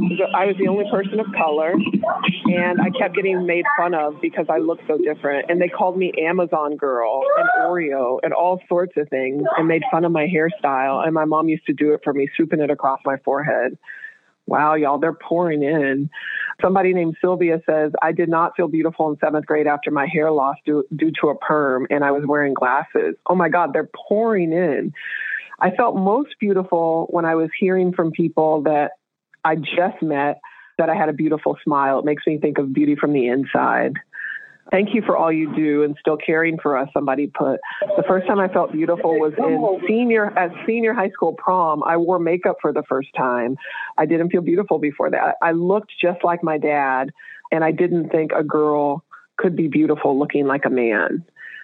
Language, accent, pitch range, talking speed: English, American, 150-185 Hz, 205 wpm